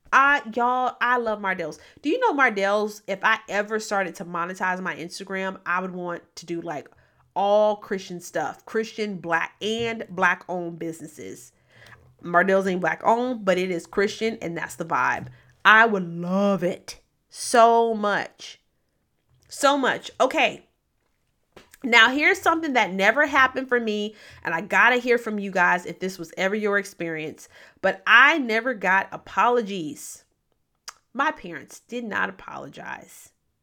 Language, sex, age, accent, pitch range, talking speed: English, female, 30-49, American, 185-260 Hz, 150 wpm